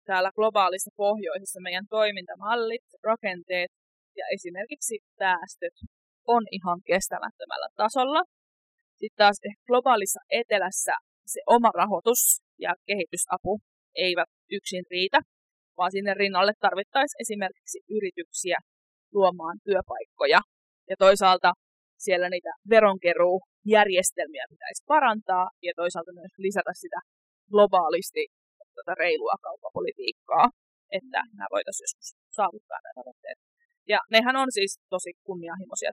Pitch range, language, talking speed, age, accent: 180-230 Hz, Finnish, 100 wpm, 20-39, native